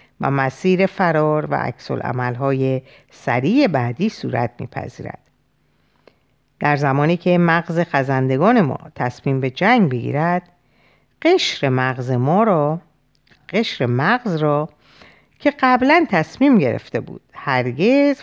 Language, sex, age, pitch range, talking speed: Persian, female, 50-69, 130-200 Hz, 115 wpm